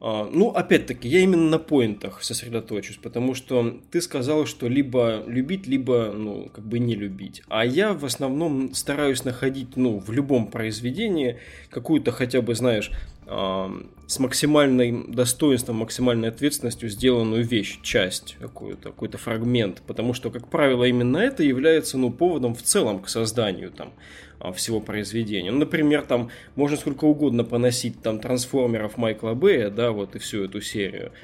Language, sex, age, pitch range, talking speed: Russian, male, 20-39, 110-140 Hz, 155 wpm